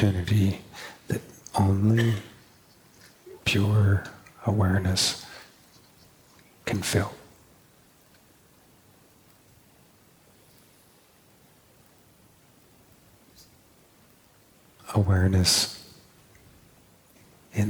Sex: male